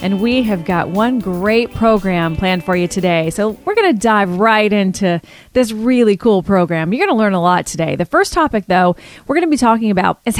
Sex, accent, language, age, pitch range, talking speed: female, American, English, 30-49, 185-245 Hz, 230 wpm